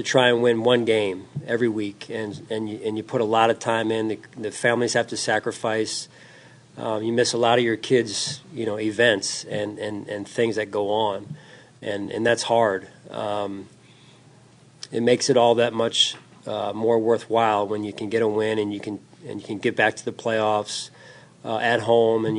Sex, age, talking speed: male, 40-59, 205 wpm